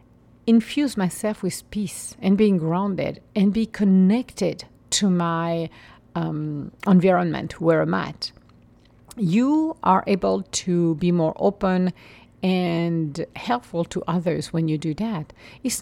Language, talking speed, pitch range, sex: English, 125 wpm, 160-215 Hz, female